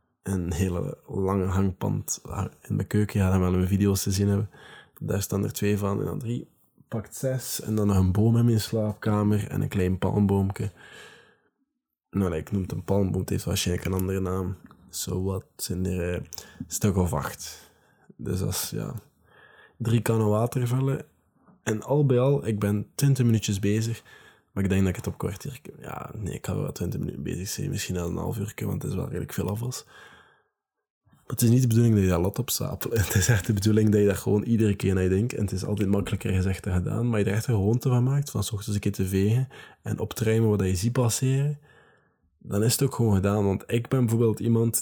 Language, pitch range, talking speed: Dutch, 95-115 Hz, 230 wpm